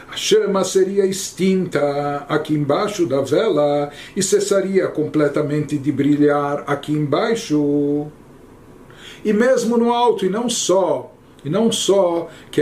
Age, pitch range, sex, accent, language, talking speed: 60-79, 150-205 Hz, male, Brazilian, Portuguese, 125 wpm